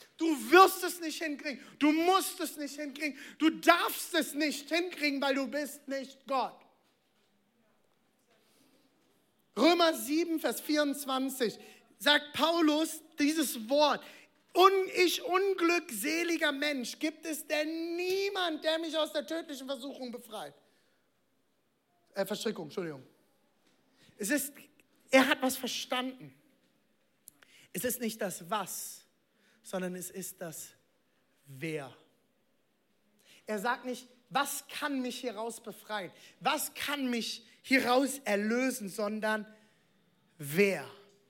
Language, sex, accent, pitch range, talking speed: German, male, German, 210-300 Hz, 110 wpm